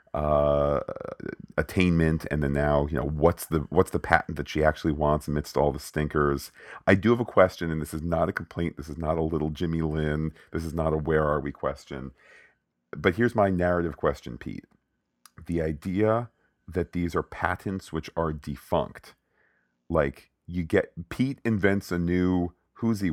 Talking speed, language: 180 wpm, English